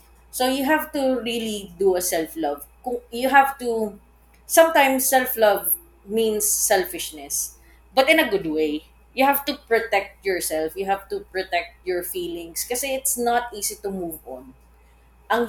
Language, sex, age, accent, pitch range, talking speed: Filipino, female, 20-39, native, 160-235 Hz, 155 wpm